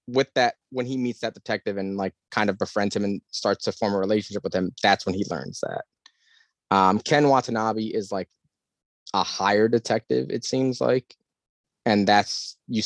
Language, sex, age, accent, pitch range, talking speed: English, male, 20-39, American, 95-115 Hz, 185 wpm